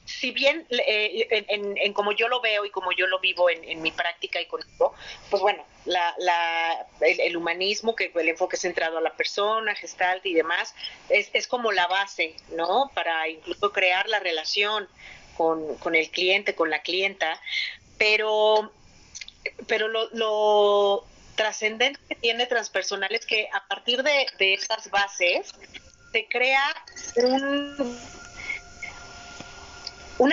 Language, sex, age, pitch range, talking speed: Spanish, female, 40-59, 185-240 Hz, 150 wpm